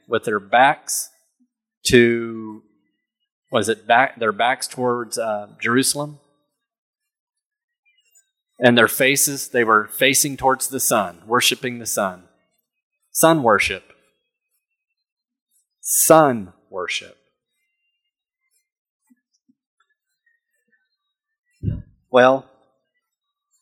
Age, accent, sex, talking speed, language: 30-49, American, male, 75 wpm, English